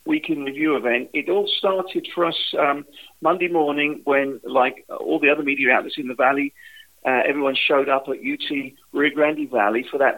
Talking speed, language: 195 wpm, English